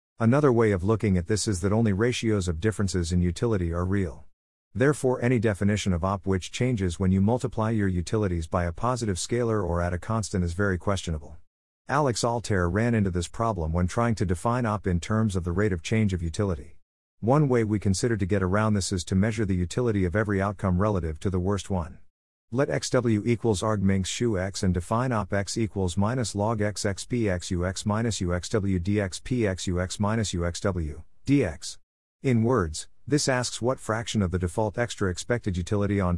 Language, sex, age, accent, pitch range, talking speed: English, male, 50-69, American, 90-115 Hz, 200 wpm